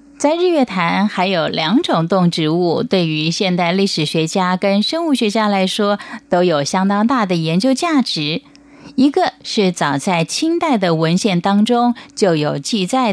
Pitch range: 160-235 Hz